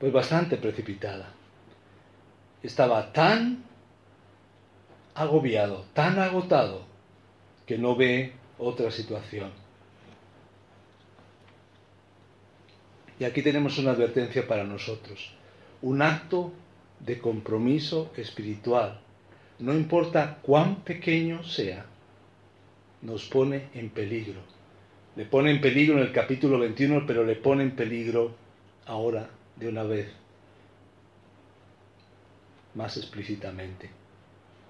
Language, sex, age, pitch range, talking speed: Spanish, male, 40-59, 100-130 Hz, 90 wpm